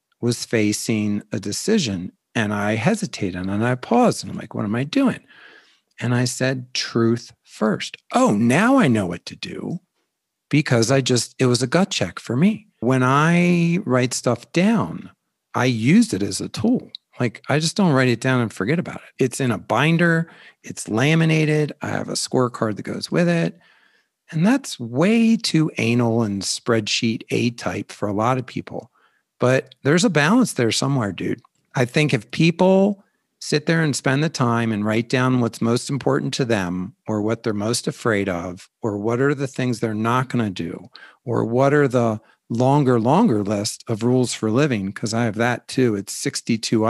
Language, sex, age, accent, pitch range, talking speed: English, male, 50-69, American, 110-145 Hz, 185 wpm